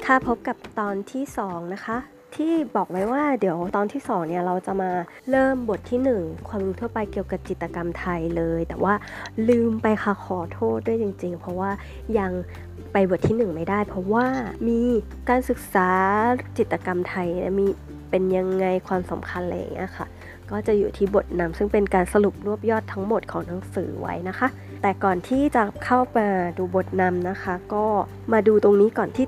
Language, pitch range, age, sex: Thai, 185-225 Hz, 20-39, female